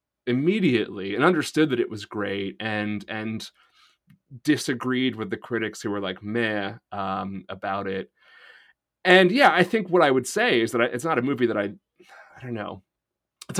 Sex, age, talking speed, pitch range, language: male, 30-49, 175 wpm, 100-130 Hz, English